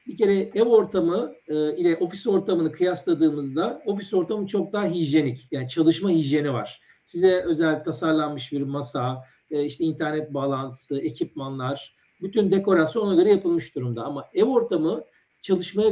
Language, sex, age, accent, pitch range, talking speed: Turkish, male, 50-69, native, 155-215 Hz, 130 wpm